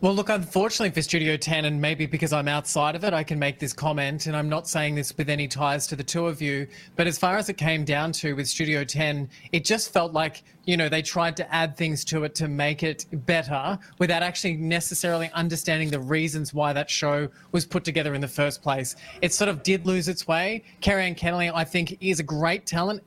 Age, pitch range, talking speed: 20-39, 150-175 Hz, 235 wpm